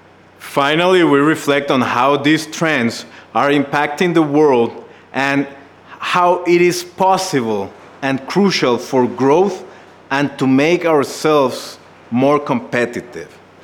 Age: 40-59